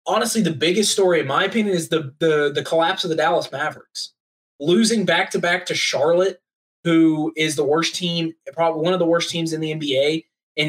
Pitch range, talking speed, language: 150-180 Hz, 195 wpm, English